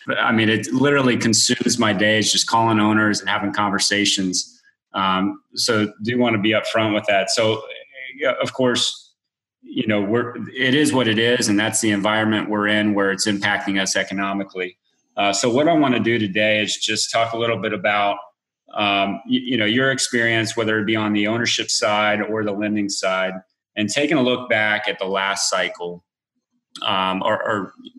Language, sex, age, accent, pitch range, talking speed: English, male, 30-49, American, 100-115 Hz, 190 wpm